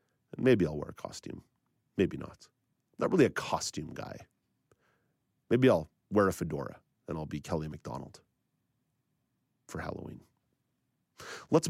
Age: 40-59